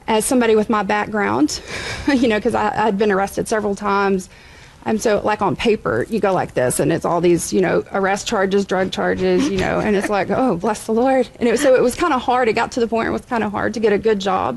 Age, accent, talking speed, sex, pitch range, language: 40-59, American, 265 wpm, female, 195-255 Hz, English